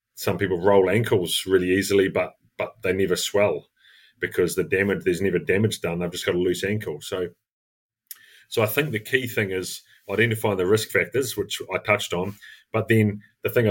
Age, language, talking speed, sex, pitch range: 30-49, English, 195 wpm, male, 90-110 Hz